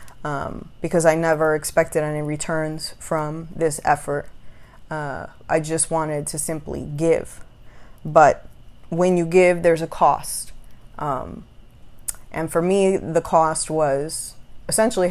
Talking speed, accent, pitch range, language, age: 125 wpm, American, 150-175 Hz, English, 20-39